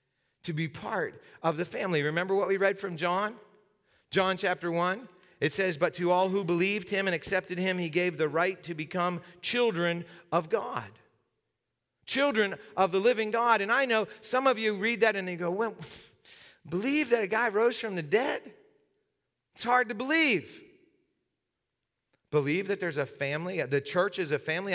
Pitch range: 155-215 Hz